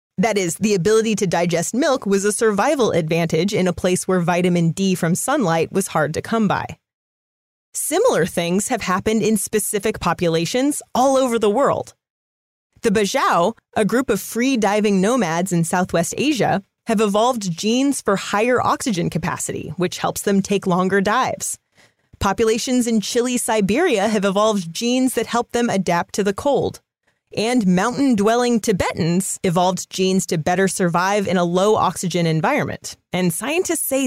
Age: 30-49